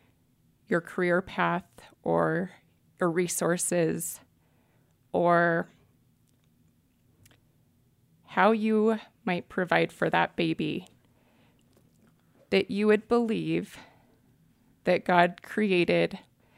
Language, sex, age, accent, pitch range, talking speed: English, female, 30-49, American, 175-195 Hz, 75 wpm